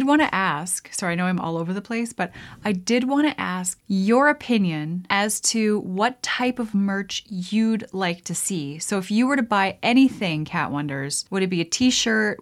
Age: 20-39